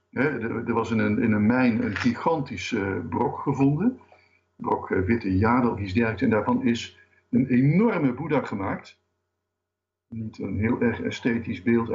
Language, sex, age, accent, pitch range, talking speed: Dutch, male, 60-79, Dutch, 110-145 Hz, 140 wpm